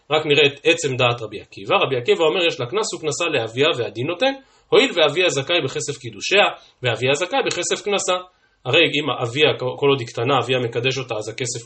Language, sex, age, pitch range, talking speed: Hebrew, male, 30-49, 130-180 Hz, 195 wpm